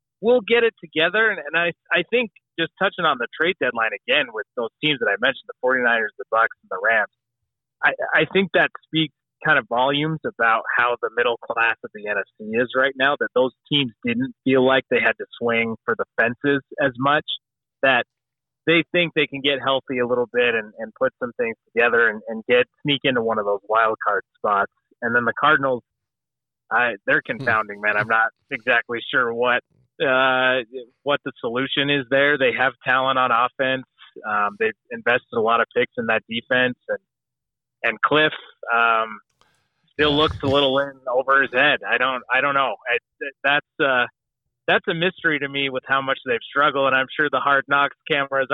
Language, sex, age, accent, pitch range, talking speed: English, male, 30-49, American, 125-155 Hz, 200 wpm